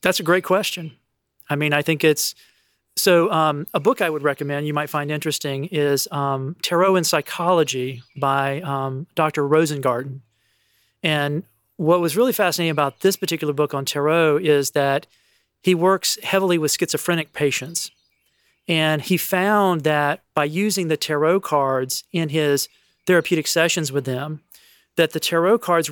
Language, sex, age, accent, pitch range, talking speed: English, male, 40-59, American, 145-175 Hz, 155 wpm